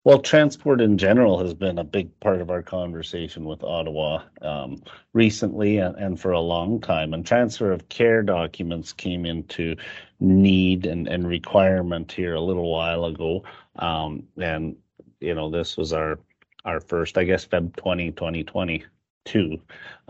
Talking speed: 160 wpm